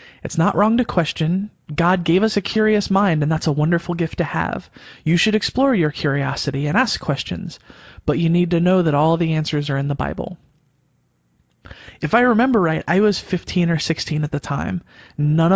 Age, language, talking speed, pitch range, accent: 20-39, English, 200 wpm, 150-180 Hz, American